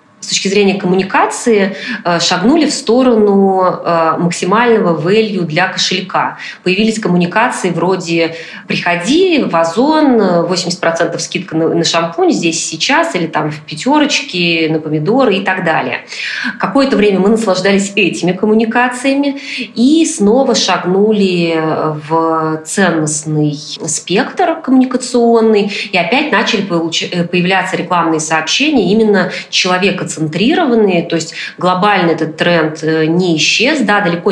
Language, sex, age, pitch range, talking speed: Russian, female, 20-39, 160-210 Hz, 115 wpm